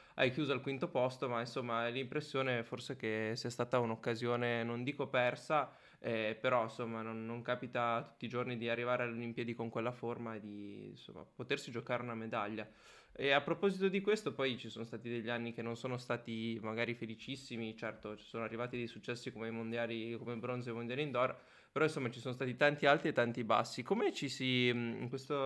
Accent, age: native, 20-39